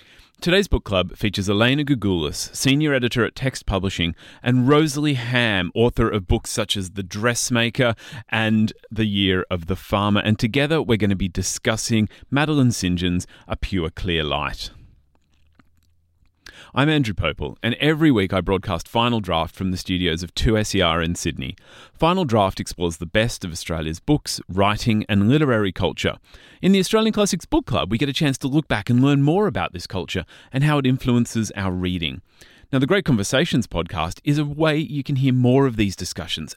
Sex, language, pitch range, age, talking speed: male, English, 90-135 Hz, 30-49, 180 wpm